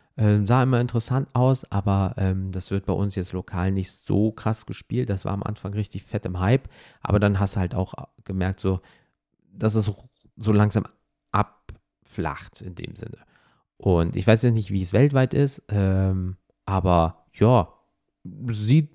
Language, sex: German, male